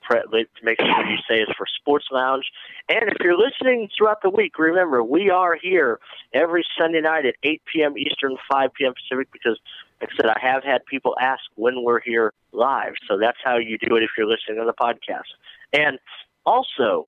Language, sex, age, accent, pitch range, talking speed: English, male, 50-69, American, 125-210 Hz, 200 wpm